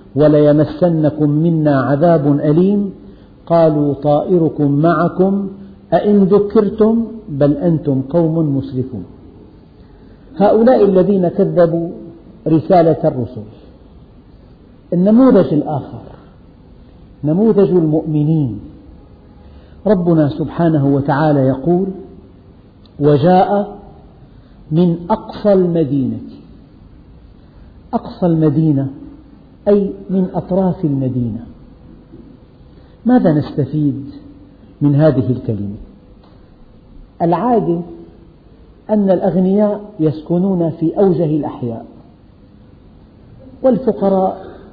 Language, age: Arabic, 50-69